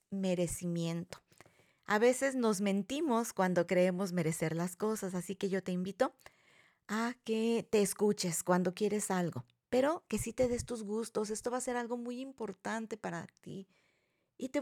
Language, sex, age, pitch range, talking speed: Spanish, female, 40-59, 210-255 Hz, 165 wpm